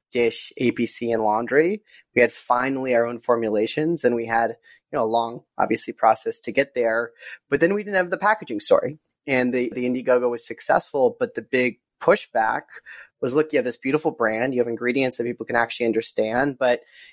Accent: American